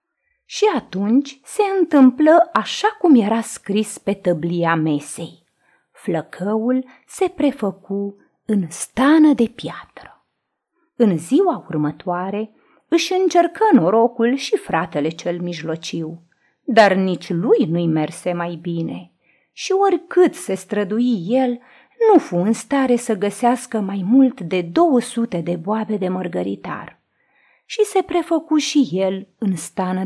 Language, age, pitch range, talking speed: Romanian, 30-49, 185-310 Hz, 120 wpm